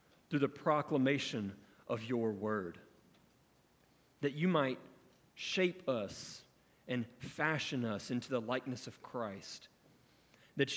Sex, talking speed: male, 110 wpm